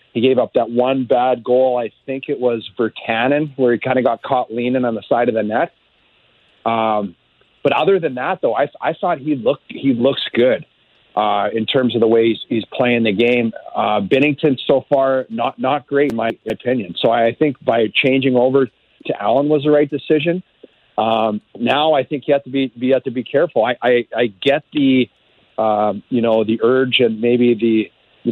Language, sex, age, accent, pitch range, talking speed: English, male, 40-59, American, 115-130 Hz, 200 wpm